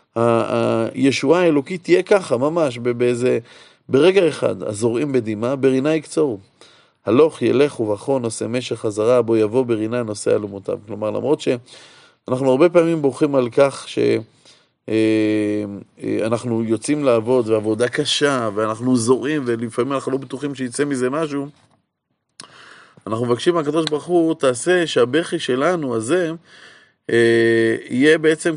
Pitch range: 115-150 Hz